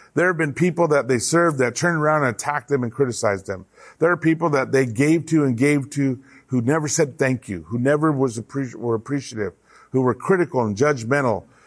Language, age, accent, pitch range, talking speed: English, 50-69, American, 115-160 Hz, 215 wpm